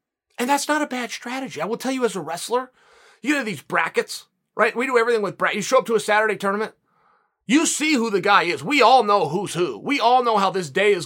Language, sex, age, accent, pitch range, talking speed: English, male, 30-49, American, 190-250 Hz, 260 wpm